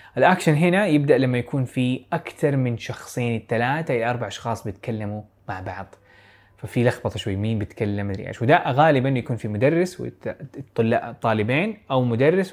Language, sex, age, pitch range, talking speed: Arabic, male, 20-39, 110-145 Hz, 160 wpm